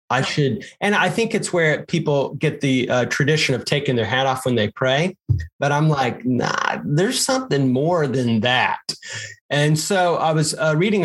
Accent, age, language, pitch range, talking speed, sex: American, 30-49, English, 125-155 Hz, 190 wpm, male